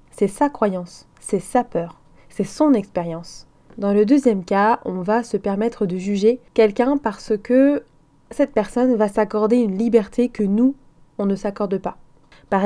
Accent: French